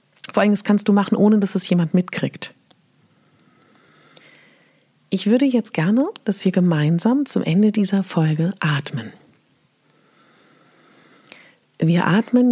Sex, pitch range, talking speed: female, 145-200 Hz, 120 wpm